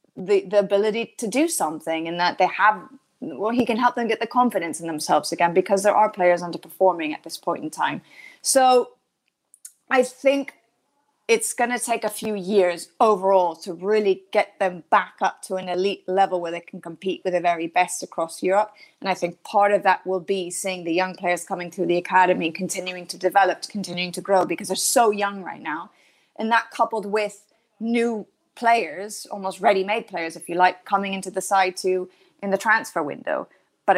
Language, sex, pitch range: English, female, 175-220 Hz